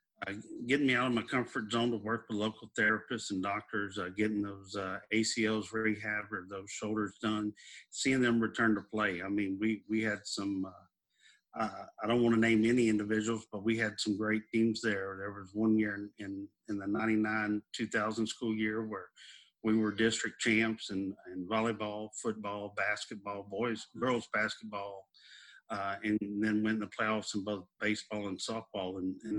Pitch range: 105-110 Hz